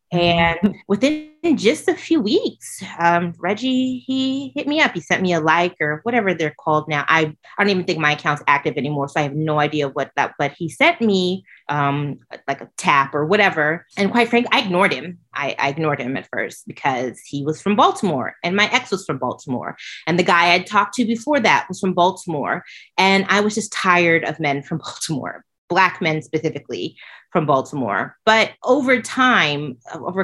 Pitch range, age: 155-210 Hz, 30-49